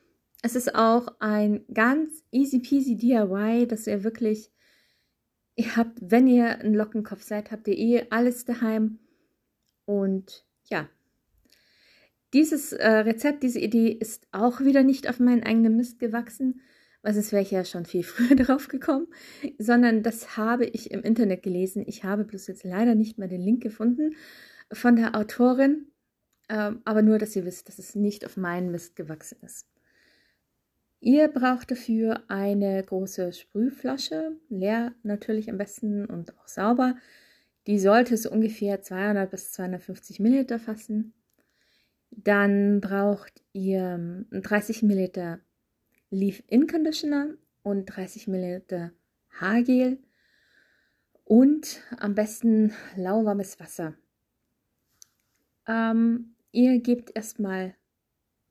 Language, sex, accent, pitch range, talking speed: German, female, German, 200-245 Hz, 125 wpm